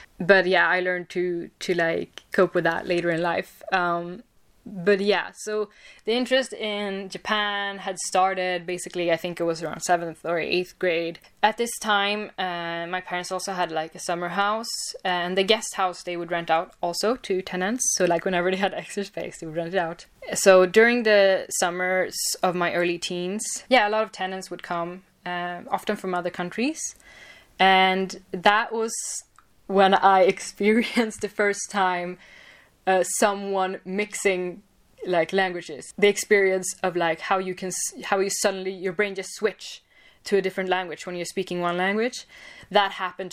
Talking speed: 175 wpm